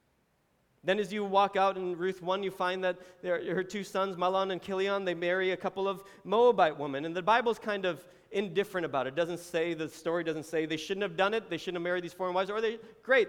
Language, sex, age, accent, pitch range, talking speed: English, male, 30-49, American, 155-185 Hz, 250 wpm